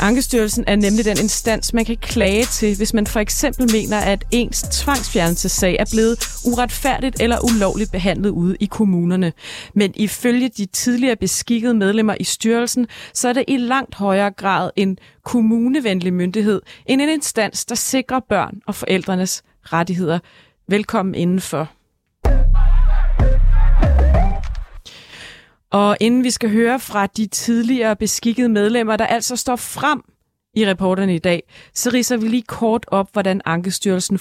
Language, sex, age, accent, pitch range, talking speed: Danish, female, 30-49, native, 190-235 Hz, 140 wpm